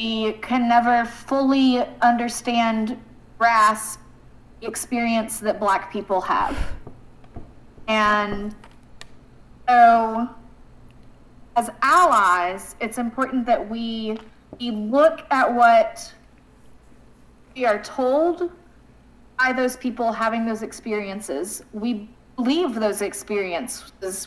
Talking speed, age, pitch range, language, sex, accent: 90 wpm, 30-49, 220-260 Hz, English, female, American